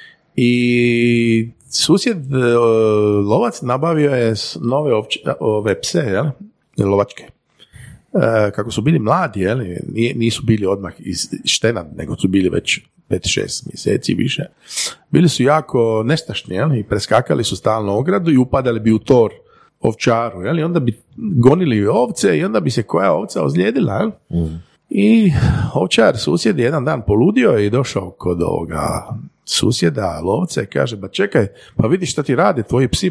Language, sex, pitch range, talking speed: Croatian, male, 105-135 Hz, 150 wpm